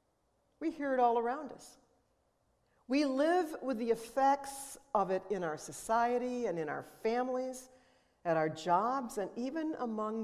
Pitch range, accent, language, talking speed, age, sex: 195-275 Hz, American, English, 150 wpm, 50-69, female